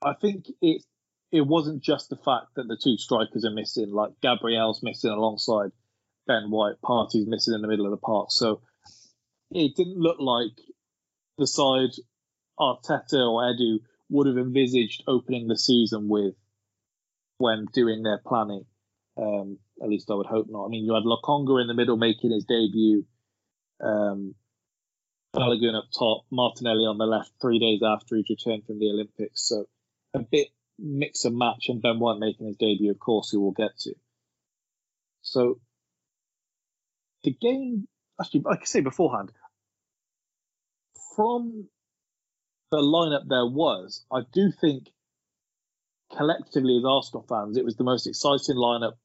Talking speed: 155 wpm